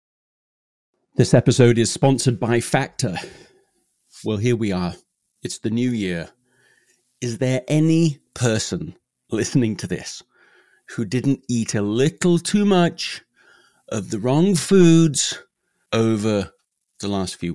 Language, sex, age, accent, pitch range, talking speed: English, male, 40-59, British, 100-135 Hz, 125 wpm